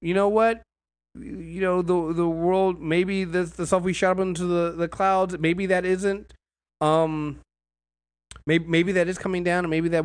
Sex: male